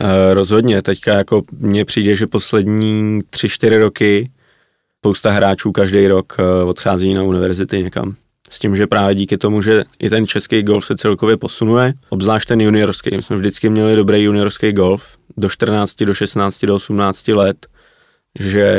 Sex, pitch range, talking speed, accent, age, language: male, 100-105 Hz, 155 wpm, native, 20-39, Czech